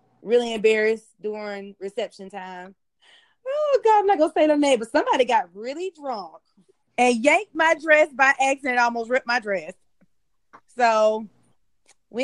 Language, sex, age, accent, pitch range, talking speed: English, female, 20-39, American, 210-265 Hz, 150 wpm